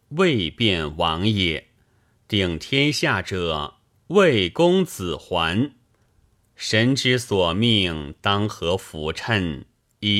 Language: Chinese